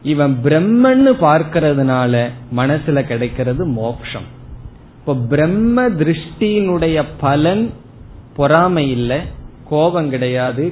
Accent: native